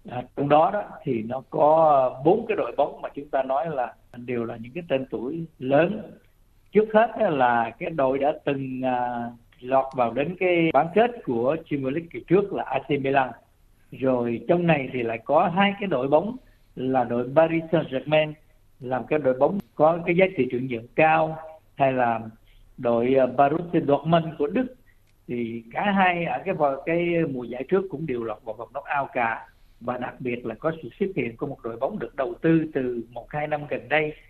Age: 60-79